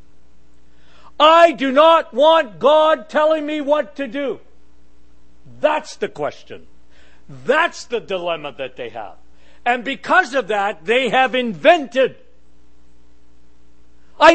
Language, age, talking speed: English, 60-79, 115 wpm